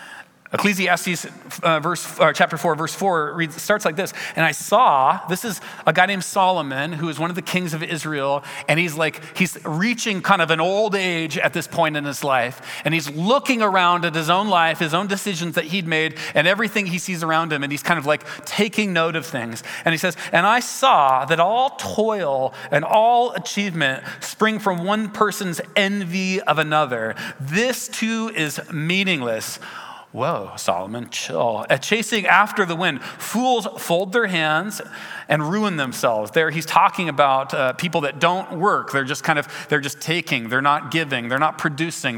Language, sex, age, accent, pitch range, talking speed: English, male, 40-59, American, 150-200 Hz, 185 wpm